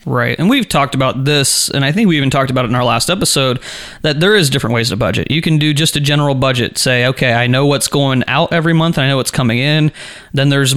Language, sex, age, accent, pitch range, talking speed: English, male, 20-39, American, 130-150 Hz, 275 wpm